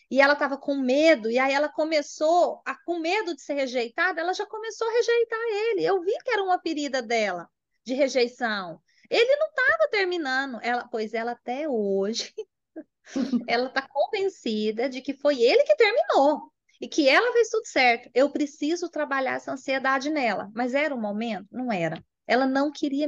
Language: Portuguese